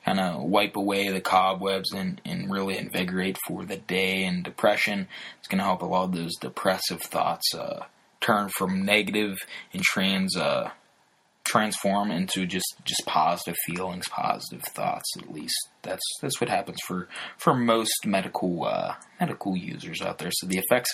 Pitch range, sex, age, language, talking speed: 95-125 Hz, male, 20-39, English, 165 wpm